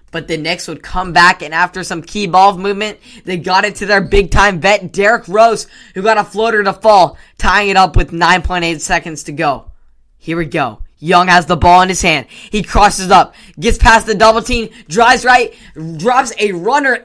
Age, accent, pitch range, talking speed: 10-29, American, 175-215 Hz, 210 wpm